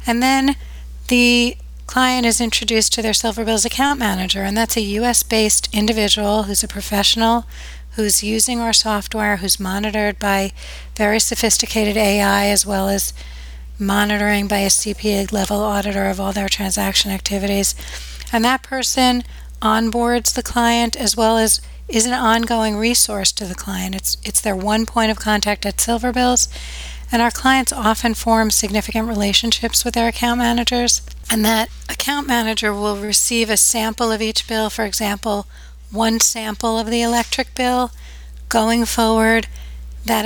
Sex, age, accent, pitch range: female, 40-59, American, 205-235 Hz